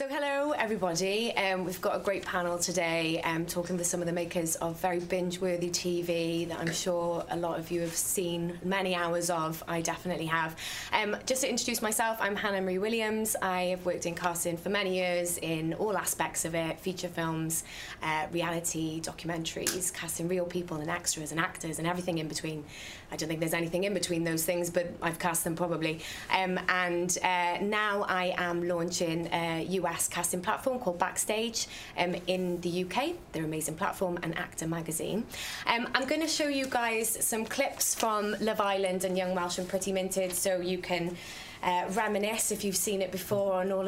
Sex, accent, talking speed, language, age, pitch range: female, British, 190 wpm, English, 20-39, 175-205 Hz